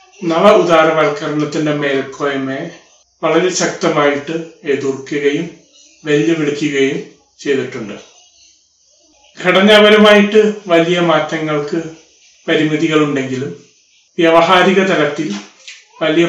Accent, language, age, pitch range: native, Malayalam, 30-49, 145-175 Hz